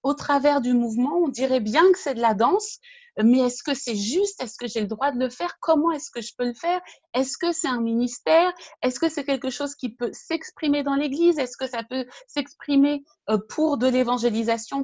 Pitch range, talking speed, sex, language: 220-295 Hz, 225 wpm, female, French